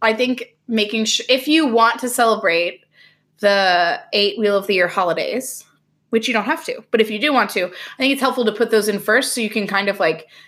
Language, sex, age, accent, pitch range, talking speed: English, female, 20-39, American, 195-250 Hz, 240 wpm